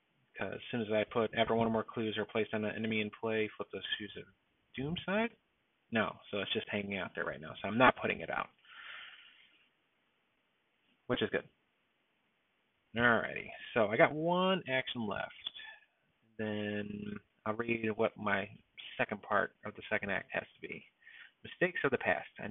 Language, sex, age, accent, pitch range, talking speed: English, male, 30-49, American, 105-125 Hz, 180 wpm